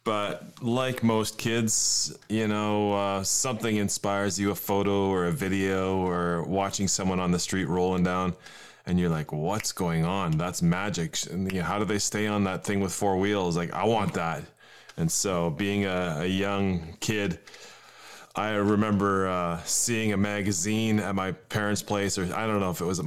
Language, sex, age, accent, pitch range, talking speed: English, male, 20-39, American, 90-105 Hz, 185 wpm